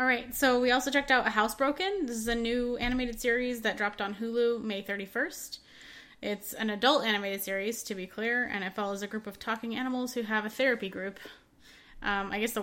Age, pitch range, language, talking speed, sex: 20-39, 185-235 Hz, English, 220 wpm, female